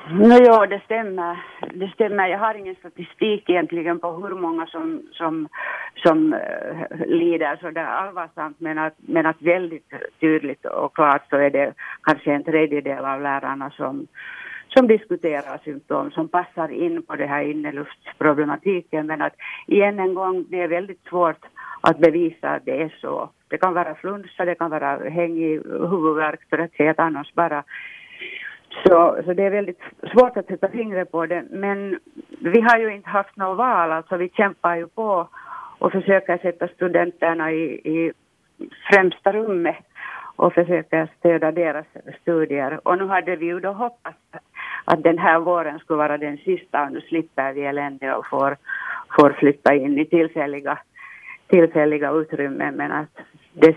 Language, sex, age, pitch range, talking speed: Swedish, female, 60-79, 155-190 Hz, 170 wpm